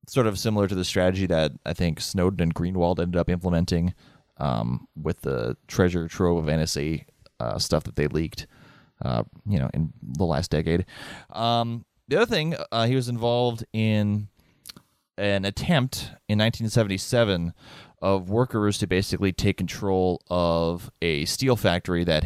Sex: male